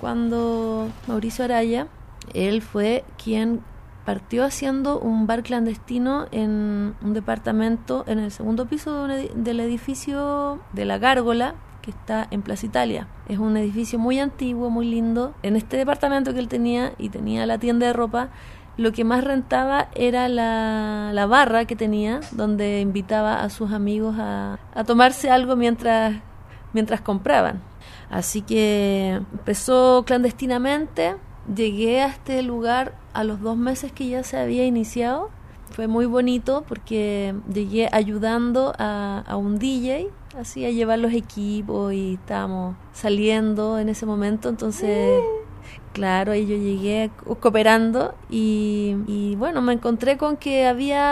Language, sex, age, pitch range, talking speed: Spanish, female, 30-49, 210-250 Hz, 140 wpm